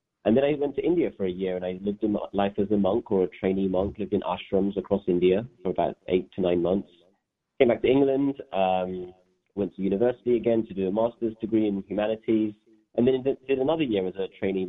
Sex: male